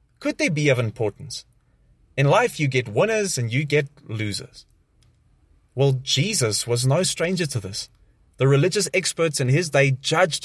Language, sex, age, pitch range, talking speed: English, male, 20-39, 135-165 Hz, 160 wpm